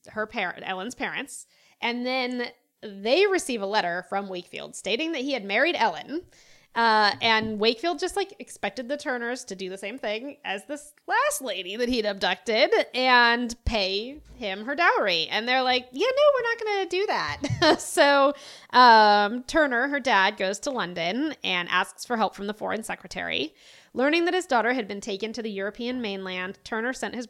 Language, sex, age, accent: English, female, 20-39, American